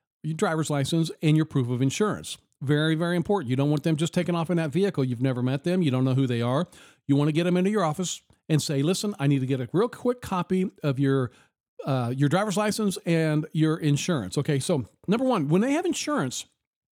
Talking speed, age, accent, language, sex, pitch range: 235 wpm, 50-69, American, English, male, 140-180 Hz